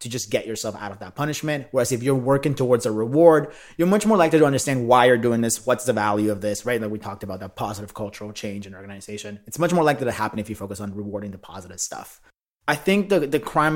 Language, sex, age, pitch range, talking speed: English, male, 30-49, 110-140 Hz, 260 wpm